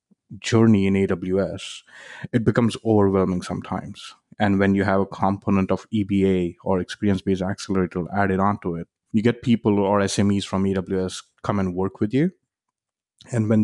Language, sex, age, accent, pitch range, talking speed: English, male, 30-49, Indian, 95-110 Hz, 160 wpm